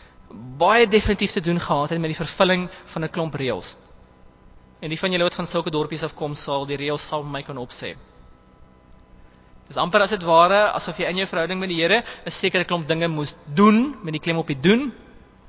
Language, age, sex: English, 20-39, male